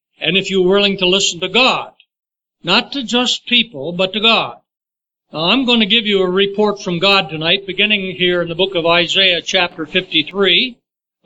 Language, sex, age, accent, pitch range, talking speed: English, male, 60-79, American, 190-240 Hz, 180 wpm